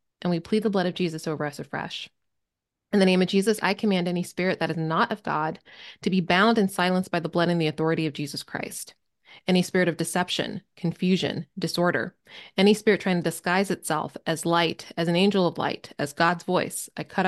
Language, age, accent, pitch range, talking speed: English, 20-39, American, 165-200 Hz, 215 wpm